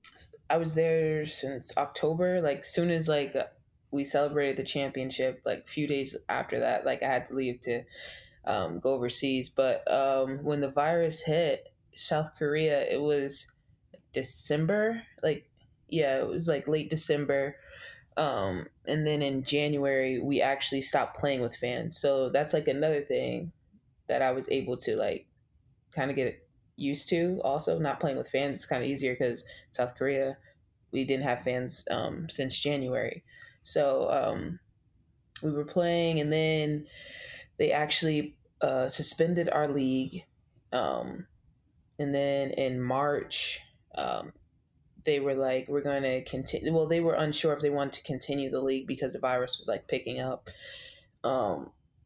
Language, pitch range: English, 135-155 Hz